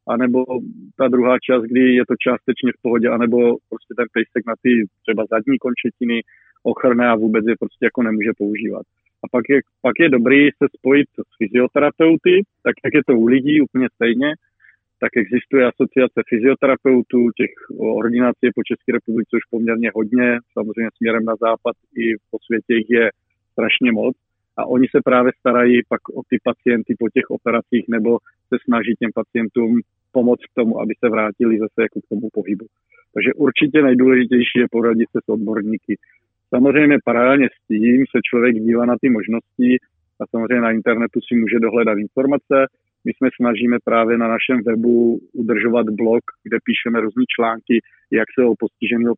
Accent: native